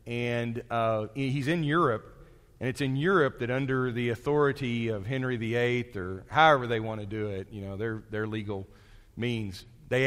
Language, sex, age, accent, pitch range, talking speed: English, male, 40-59, American, 110-140 Hz, 180 wpm